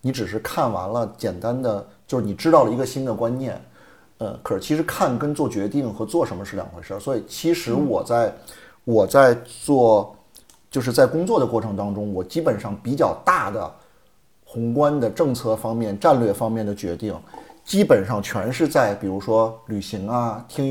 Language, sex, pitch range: Chinese, male, 110-155 Hz